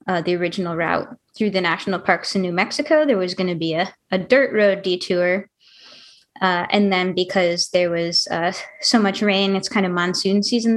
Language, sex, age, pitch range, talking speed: English, female, 20-39, 180-215 Hz, 200 wpm